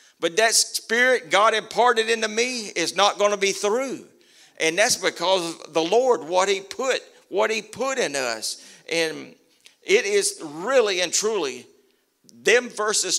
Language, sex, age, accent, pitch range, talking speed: English, male, 50-69, American, 160-270 Hz, 150 wpm